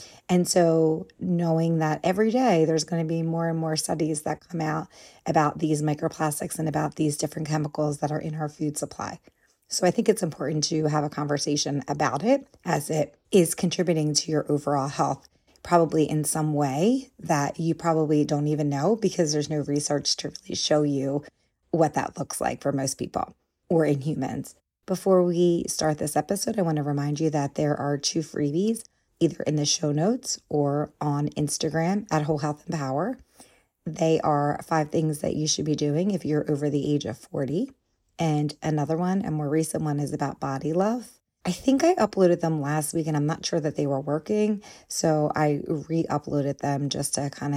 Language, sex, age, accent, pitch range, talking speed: English, female, 30-49, American, 145-165 Hz, 195 wpm